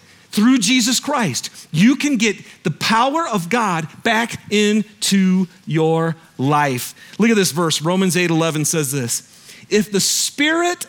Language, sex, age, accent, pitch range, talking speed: English, male, 40-59, American, 160-240 Hz, 145 wpm